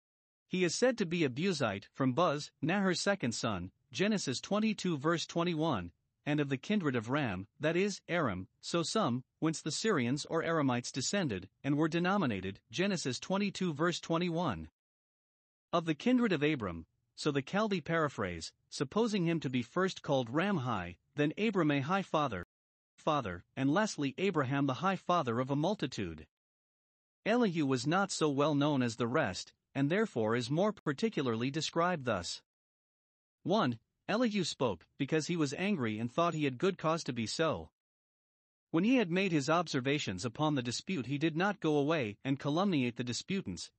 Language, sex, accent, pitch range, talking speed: English, male, American, 125-180 Hz, 165 wpm